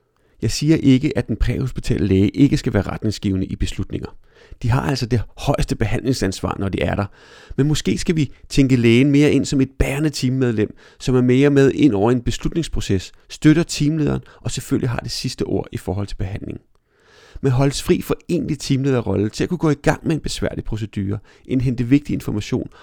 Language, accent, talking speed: Danish, native, 195 wpm